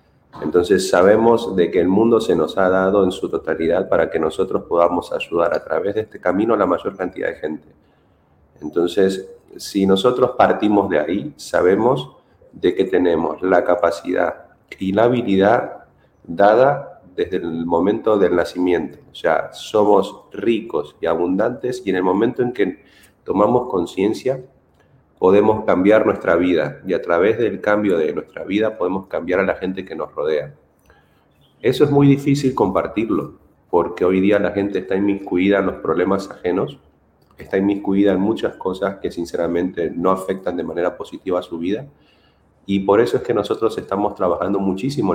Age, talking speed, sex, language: 40-59, 165 wpm, male, Spanish